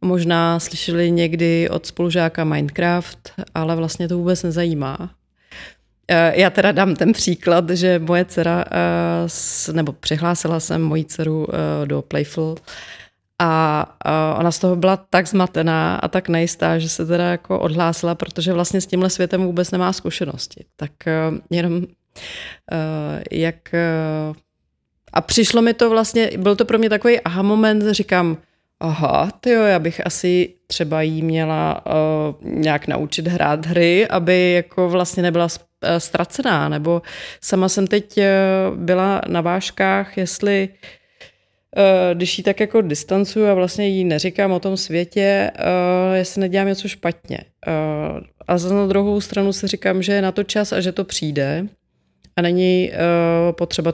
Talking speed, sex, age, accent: 150 wpm, female, 30-49, native